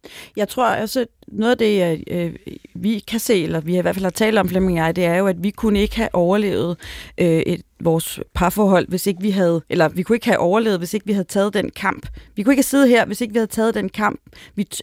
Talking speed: 265 wpm